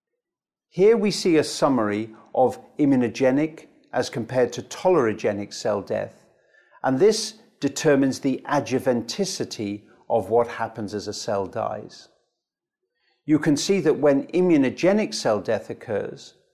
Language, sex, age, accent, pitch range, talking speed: English, male, 50-69, British, 110-145 Hz, 125 wpm